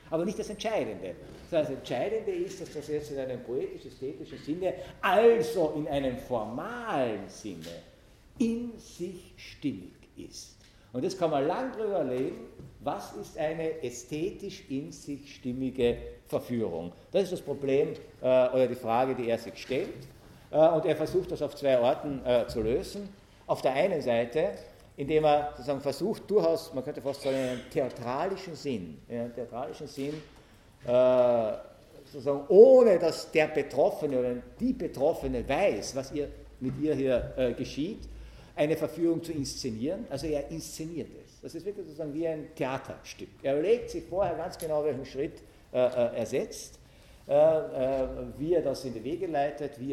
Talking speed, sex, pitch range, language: 150 wpm, male, 130-165 Hz, German